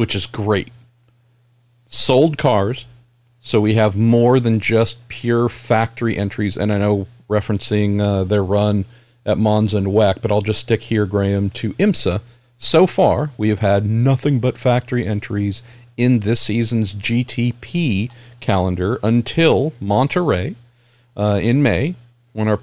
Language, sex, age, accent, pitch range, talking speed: English, male, 50-69, American, 105-120 Hz, 145 wpm